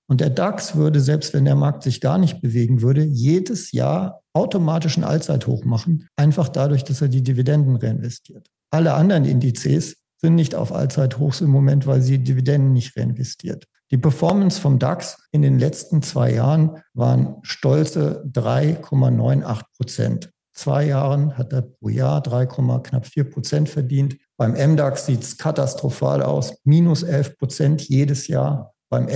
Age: 50-69